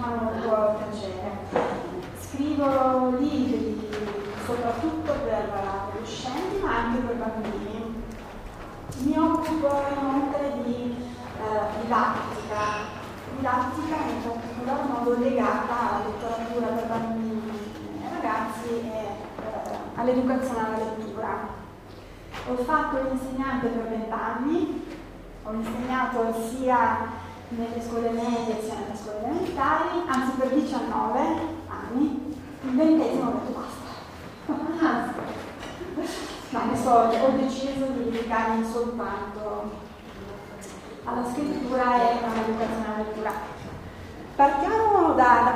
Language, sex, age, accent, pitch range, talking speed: Italian, female, 20-39, native, 225-280 Hz, 95 wpm